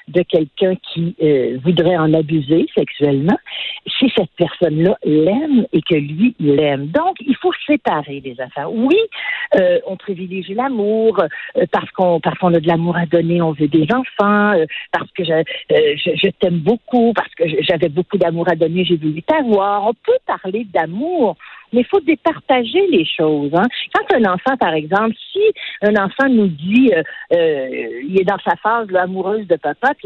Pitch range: 170-270 Hz